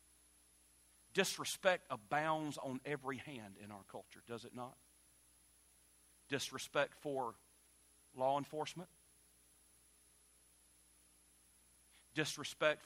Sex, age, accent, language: male, 40-59, American, English